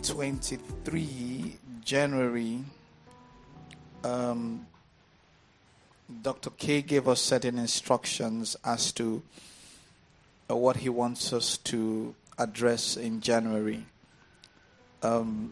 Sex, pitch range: male, 115-130 Hz